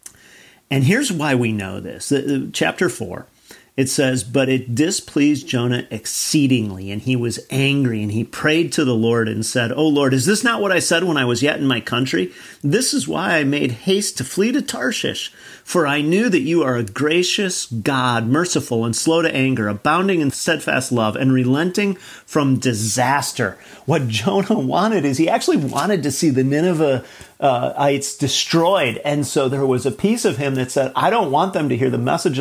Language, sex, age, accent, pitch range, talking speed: English, male, 40-59, American, 120-155 Hz, 195 wpm